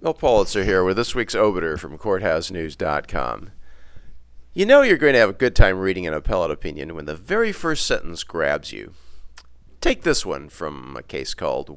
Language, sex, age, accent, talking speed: English, male, 50-69, American, 185 wpm